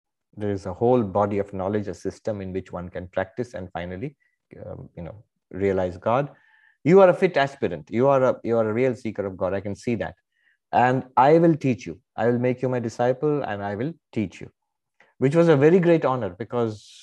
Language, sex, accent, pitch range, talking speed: English, male, Indian, 100-130 Hz, 215 wpm